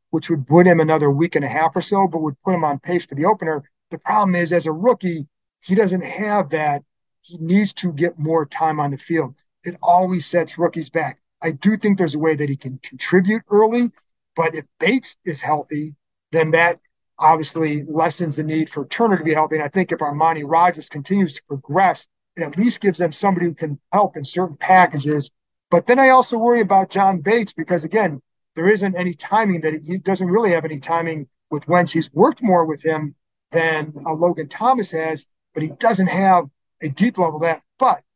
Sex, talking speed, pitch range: male, 215 wpm, 155-185 Hz